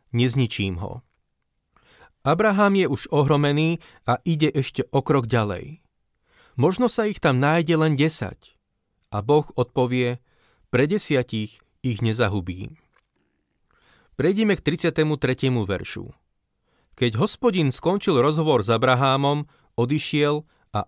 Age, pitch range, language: 40-59, 115-155 Hz, Slovak